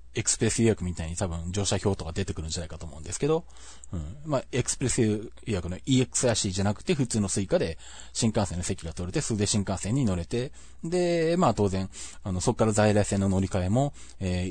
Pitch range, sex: 85-120 Hz, male